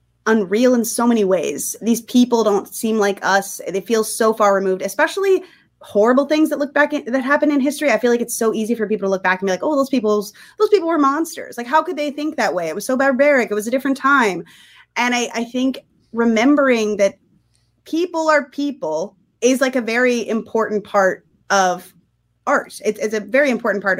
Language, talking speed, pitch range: English, 220 wpm, 190-245 Hz